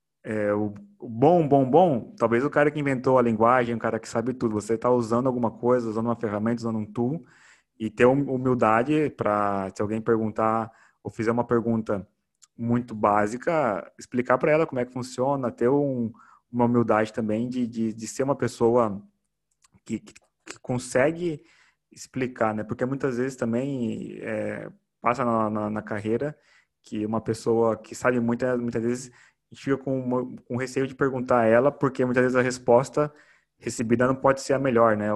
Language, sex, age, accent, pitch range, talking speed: English, male, 20-39, Brazilian, 110-130 Hz, 180 wpm